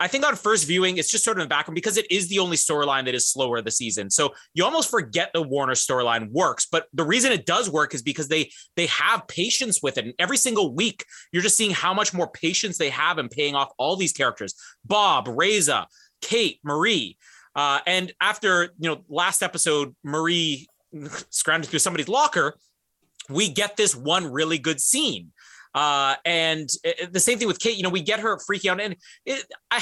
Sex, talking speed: male, 210 wpm